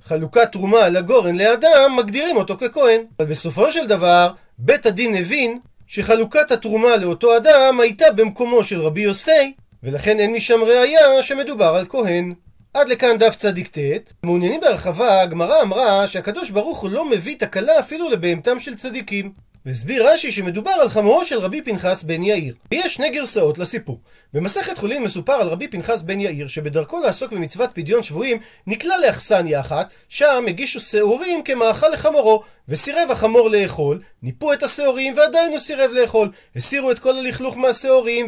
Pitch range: 185-270 Hz